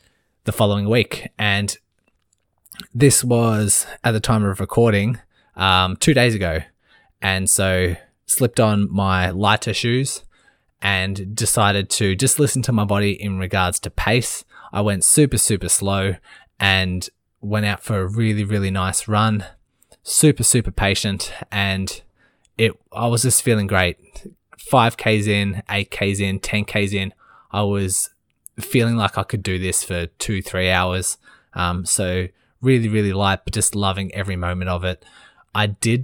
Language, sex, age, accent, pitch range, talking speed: English, male, 20-39, Australian, 95-110 Hz, 150 wpm